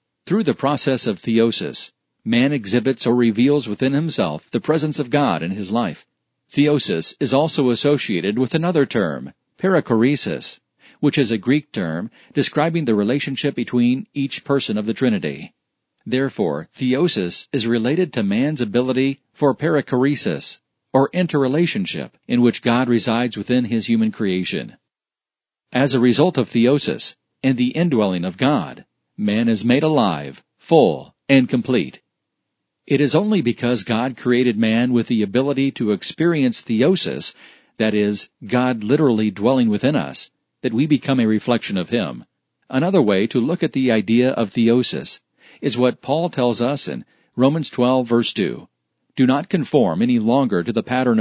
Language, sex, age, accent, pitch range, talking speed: English, male, 50-69, American, 115-145 Hz, 150 wpm